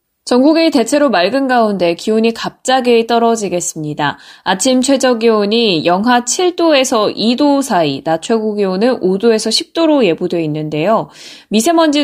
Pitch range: 175-245 Hz